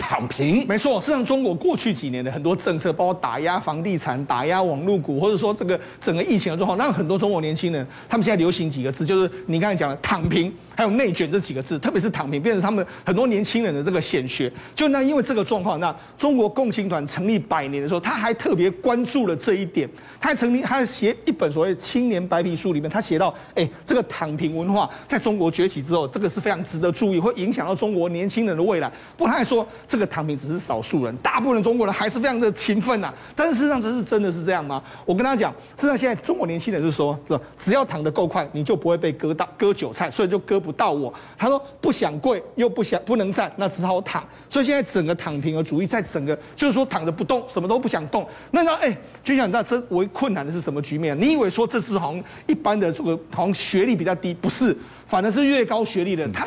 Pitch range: 170-235 Hz